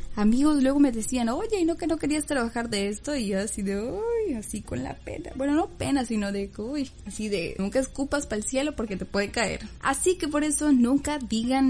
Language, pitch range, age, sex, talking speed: Spanish, 210-270 Hz, 10-29, female, 230 wpm